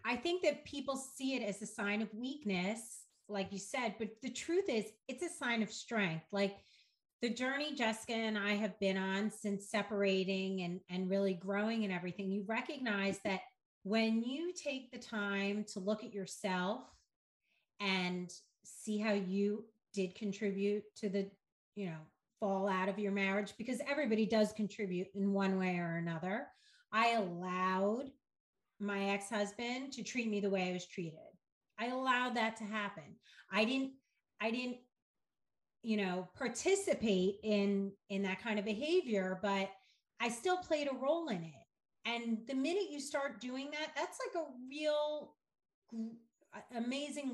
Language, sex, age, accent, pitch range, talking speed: English, female, 30-49, American, 200-255 Hz, 160 wpm